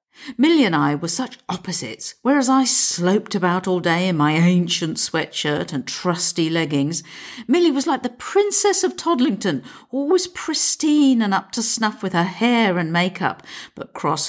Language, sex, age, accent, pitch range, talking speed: English, female, 50-69, British, 170-280 Hz, 165 wpm